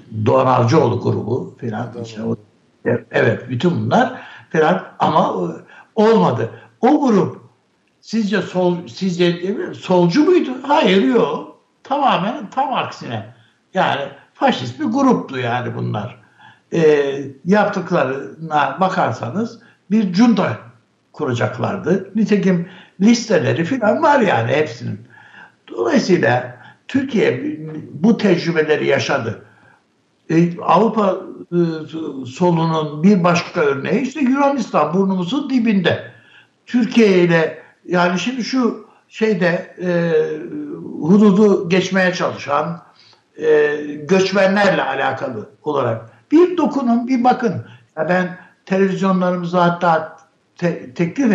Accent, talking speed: native, 90 wpm